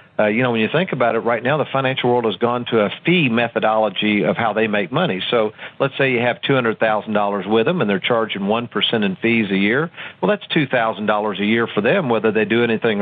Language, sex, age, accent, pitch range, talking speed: English, male, 50-69, American, 110-135 Hz, 235 wpm